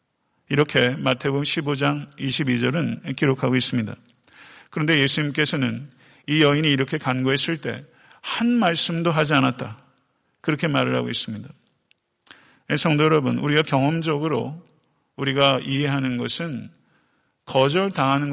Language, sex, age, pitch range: Korean, male, 50-69, 135-165 Hz